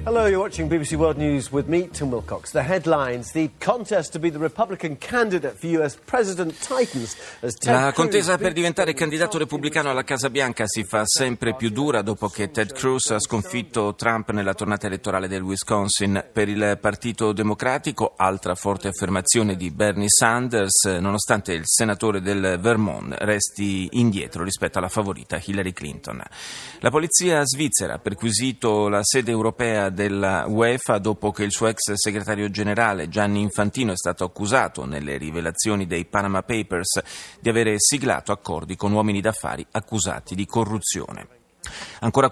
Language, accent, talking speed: Italian, native, 120 wpm